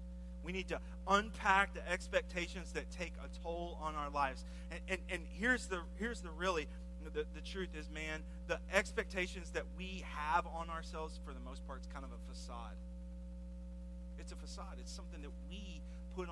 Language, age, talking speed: English, 40-59, 180 wpm